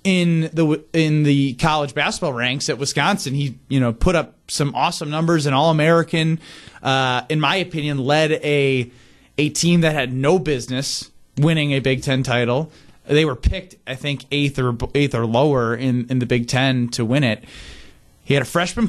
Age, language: 30-49, English